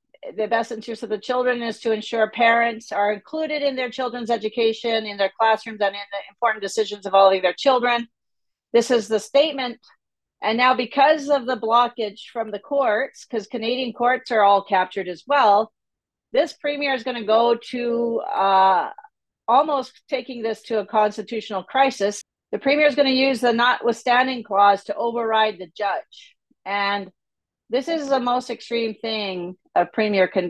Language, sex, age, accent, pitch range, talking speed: English, female, 40-59, American, 200-235 Hz, 175 wpm